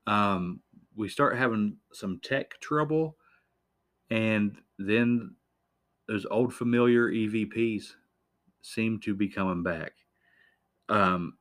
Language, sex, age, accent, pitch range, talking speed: English, male, 40-59, American, 90-110 Hz, 100 wpm